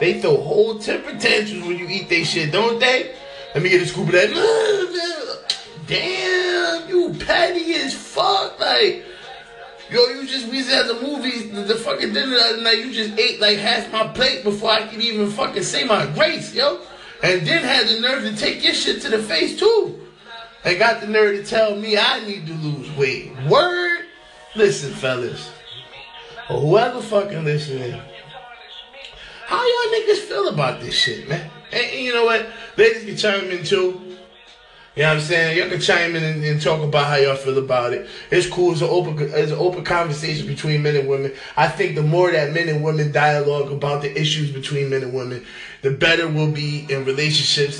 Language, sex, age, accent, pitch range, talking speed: English, male, 20-39, American, 150-235 Hz, 195 wpm